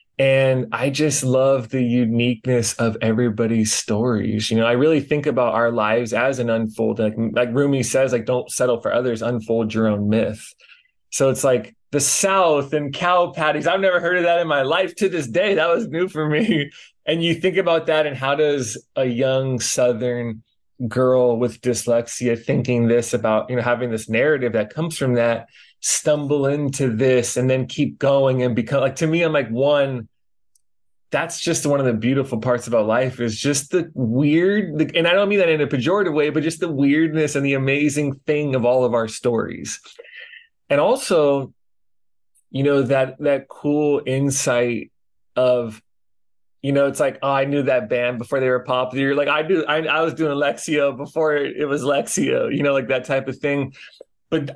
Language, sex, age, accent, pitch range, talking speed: English, male, 20-39, American, 120-150 Hz, 190 wpm